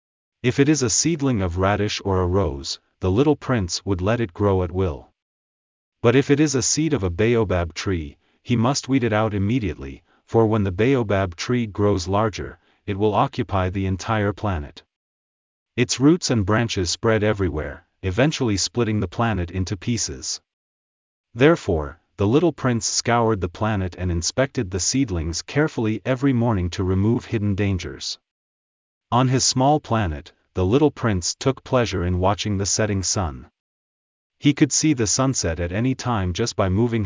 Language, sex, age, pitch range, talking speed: English, male, 40-59, 90-120 Hz, 165 wpm